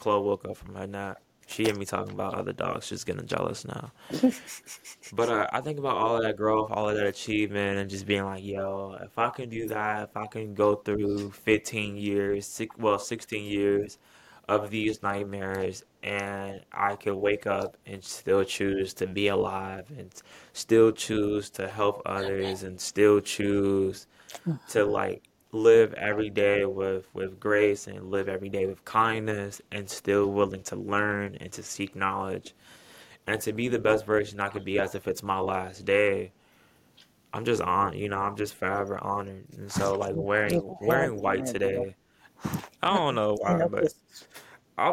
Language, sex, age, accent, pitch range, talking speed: English, male, 10-29, American, 100-110 Hz, 180 wpm